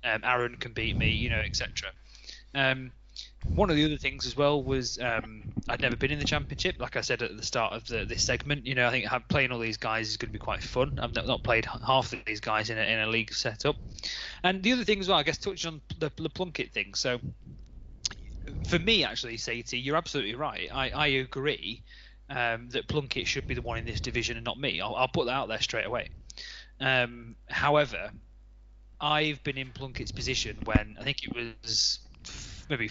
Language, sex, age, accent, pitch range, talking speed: English, male, 20-39, British, 110-140 Hz, 220 wpm